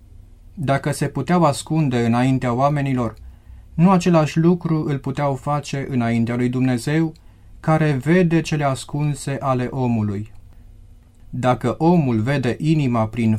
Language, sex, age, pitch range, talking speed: Romanian, male, 30-49, 110-150 Hz, 115 wpm